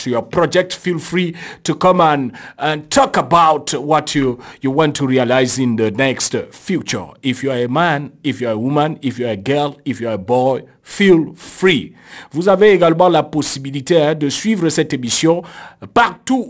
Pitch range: 145-195 Hz